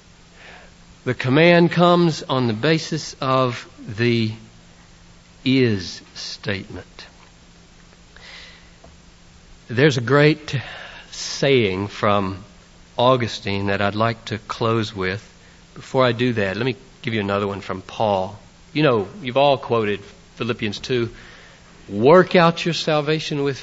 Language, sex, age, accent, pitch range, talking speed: English, male, 60-79, American, 115-175 Hz, 115 wpm